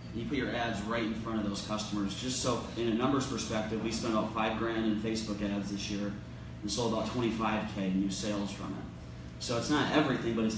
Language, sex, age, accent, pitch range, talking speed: English, male, 30-49, American, 105-115 Hz, 235 wpm